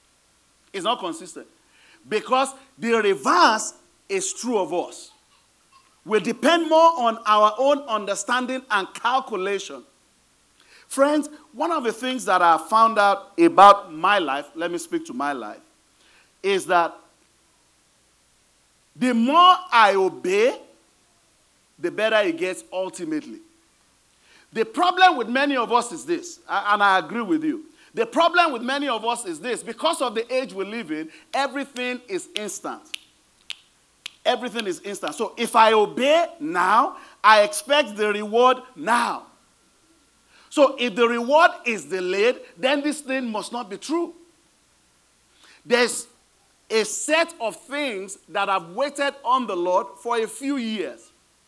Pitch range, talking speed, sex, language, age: 220-320 Hz, 140 wpm, male, English, 40-59